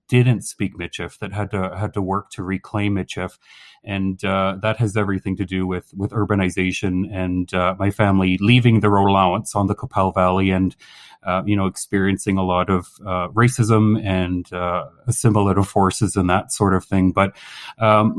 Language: English